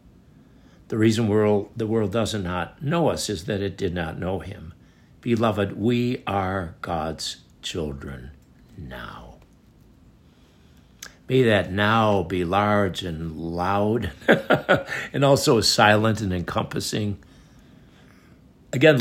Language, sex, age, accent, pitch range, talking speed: English, male, 60-79, American, 90-115 Hz, 105 wpm